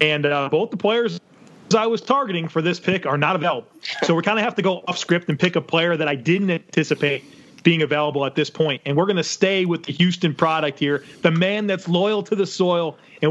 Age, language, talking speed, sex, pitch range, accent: 30-49, English, 245 wpm, male, 150-175 Hz, American